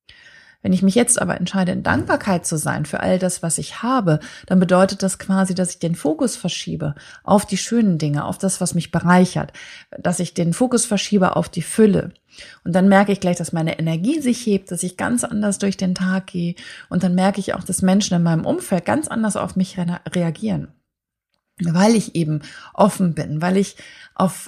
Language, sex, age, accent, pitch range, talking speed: German, female, 30-49, German, 175-205 Hz, 205 wpm